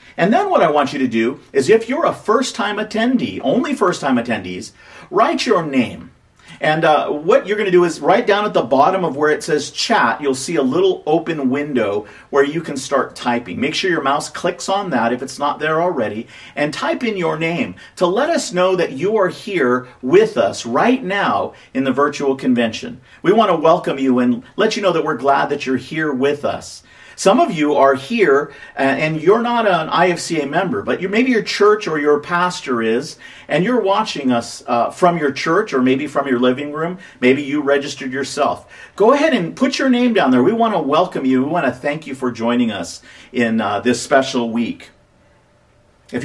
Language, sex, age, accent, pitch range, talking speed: English, male, 40-59, American, 130-180 Hz, 215 wpm